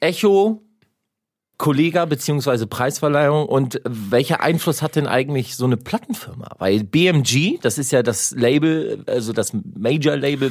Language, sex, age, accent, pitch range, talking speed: German, male, 40-59, German, 130-175 Hz, 135 wpm